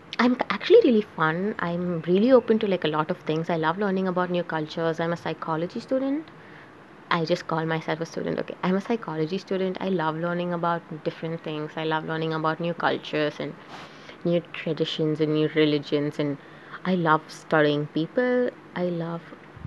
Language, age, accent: English, 20-39, Indian